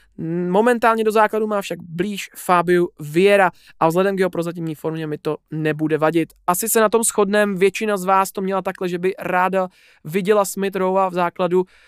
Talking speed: 185 wpm